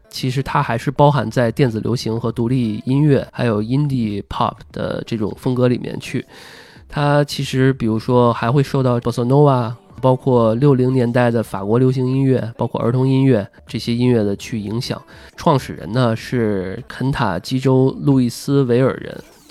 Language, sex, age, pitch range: Chinese, male, 20-39, 110-135 Hz